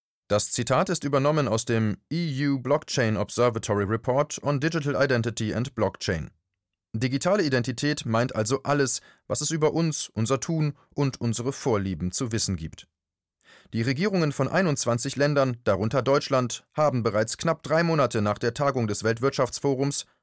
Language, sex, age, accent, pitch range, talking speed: German, male, 30-49, German, 115-145 Hz, 145 wpm